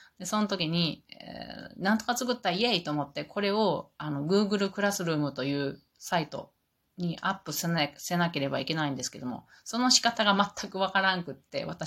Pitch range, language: 145-195 Hz, Japanese